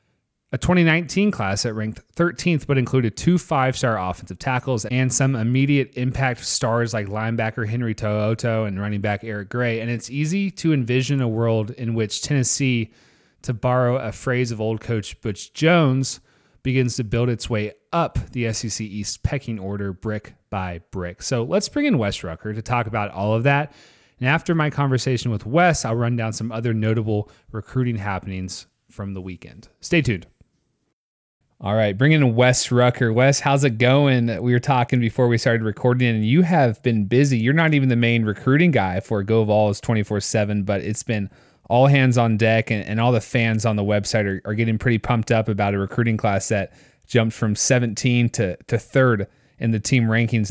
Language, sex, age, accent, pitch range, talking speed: English, male, 30-49, American, 105-130 Hz, 190 wpm